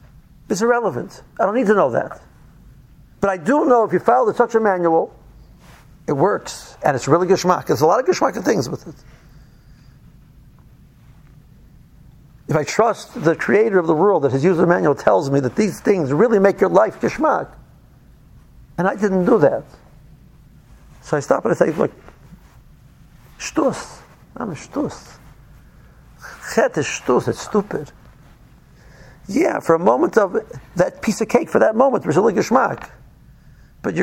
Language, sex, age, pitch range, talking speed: English, male, 50-69, 150-210 Hz, 155 wpm